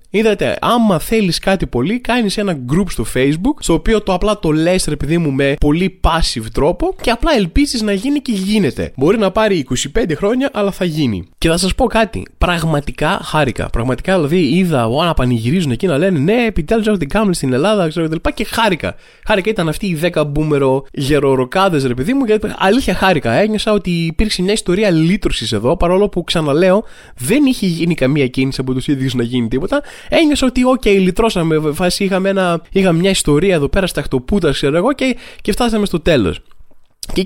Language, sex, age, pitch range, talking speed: Greek, male, 20-39, 145-210 Hz, 200 wpm